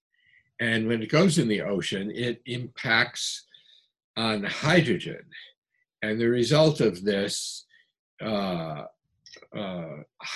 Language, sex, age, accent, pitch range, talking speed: English, male, 60-79, American, 105-160 Hz, 105 wpm